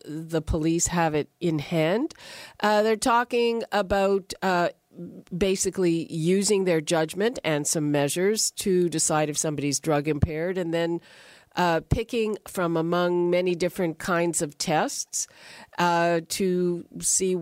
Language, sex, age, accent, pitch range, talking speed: English, female, 50-69, American, 165-205 Hz, 130 wpm